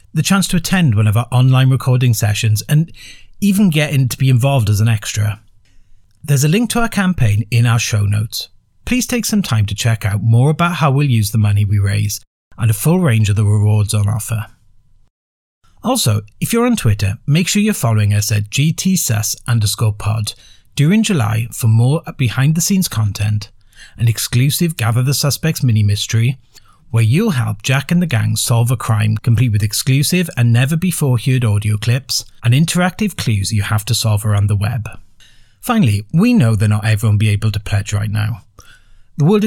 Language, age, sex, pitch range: English, 40-59, male, 105-140 Hz